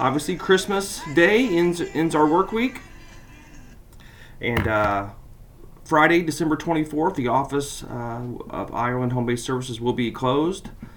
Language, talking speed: English, 130 wpm